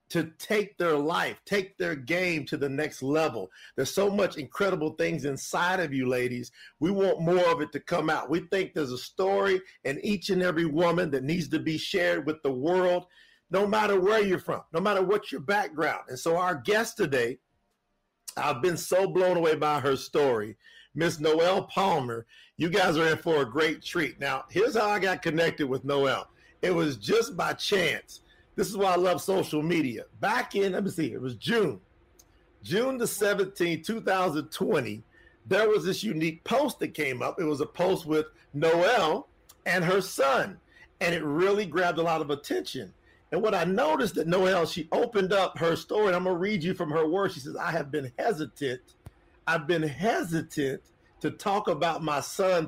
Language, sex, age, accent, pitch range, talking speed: English, male, 50-69, American, 155-190 Hz, 195 wpm